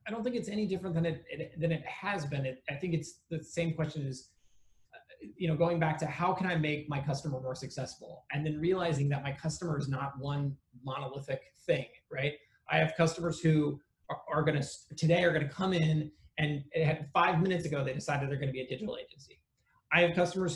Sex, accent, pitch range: male, American, 140-175 Hz